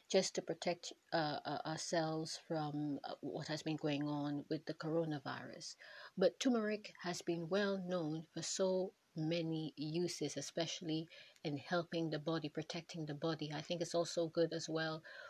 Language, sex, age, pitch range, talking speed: English, female, 30-49, 155-180 Hz, 155 wpm